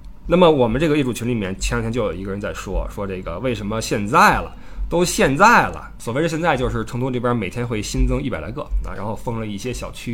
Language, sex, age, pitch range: Chinese, male, 20-39, 110-190 Hz